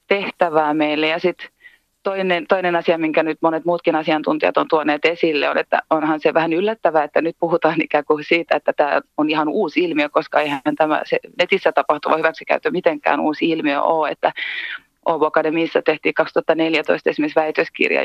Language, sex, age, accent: Finnish, female, 30-49, native